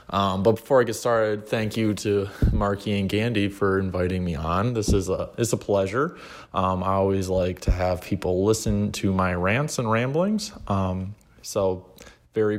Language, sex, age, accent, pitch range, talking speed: English, male, 20-39, American, 100-115 Hz, 180 wpm